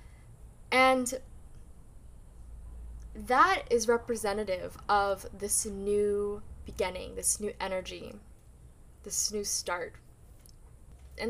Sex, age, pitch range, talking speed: female, 10-29, 190-255 Hz, 80 wpm